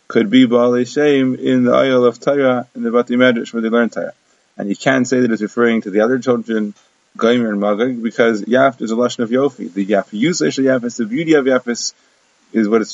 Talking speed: 225 wpm